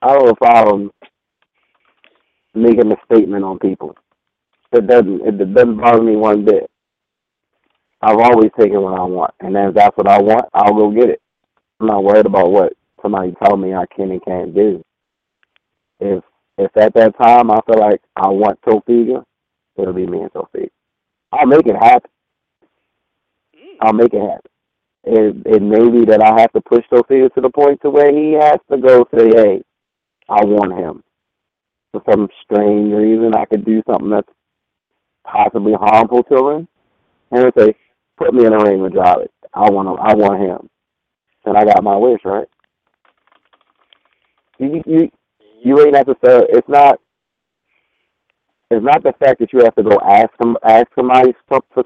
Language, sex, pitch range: English, male, 105-130 Hz